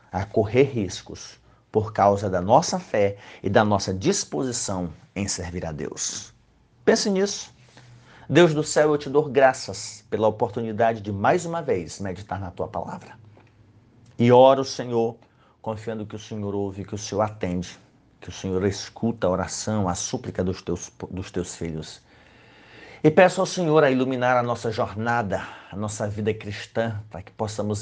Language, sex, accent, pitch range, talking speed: Portuguese, male, Brazilian, 100-120 Hz, 165 wpm